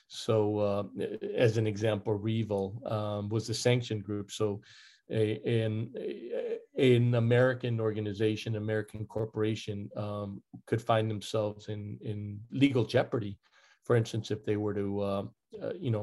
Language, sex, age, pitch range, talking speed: English, male, 40-59, 110-125 Hz, 140 wpm